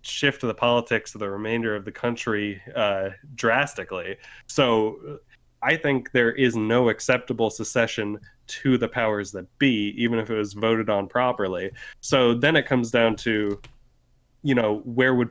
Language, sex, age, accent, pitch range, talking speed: English, male, 20-39, American, 115-140 Hz, 165 wpm